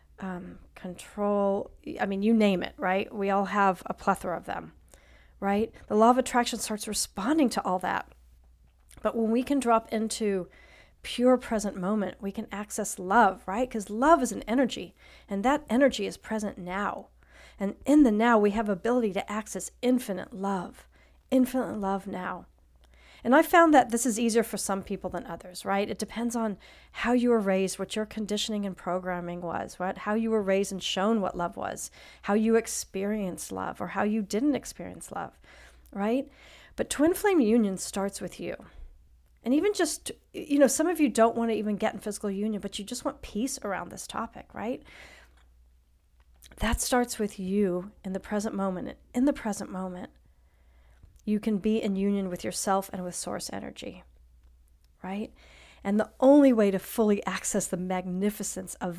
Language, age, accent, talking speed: English, 40-59, American, 180 wpm